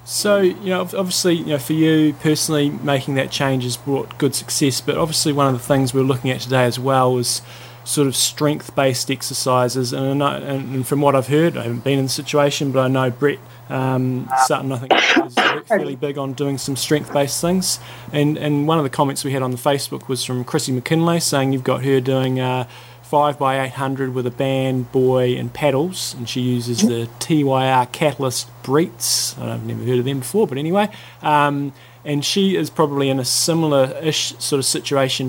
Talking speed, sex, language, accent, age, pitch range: 205 wpm, male, English, Australian, 20-39, 125-145 Hz